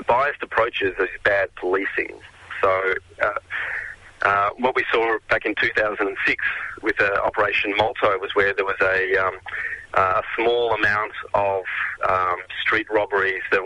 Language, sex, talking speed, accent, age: English, male, 140 wpm, Australian, 30-49